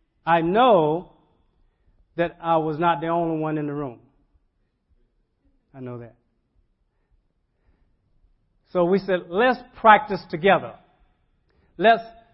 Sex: male